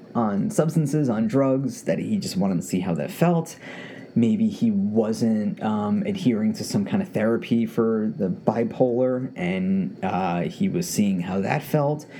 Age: 30-49